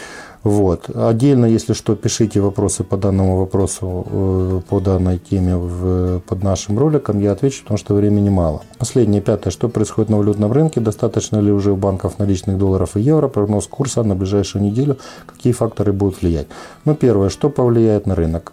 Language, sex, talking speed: Ukrainian, male, 170 wpm